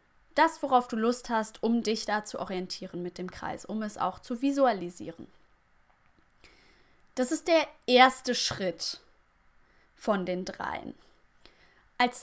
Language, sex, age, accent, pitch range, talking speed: German, female, 20-39, German, 210-285 Hz, 135 wpm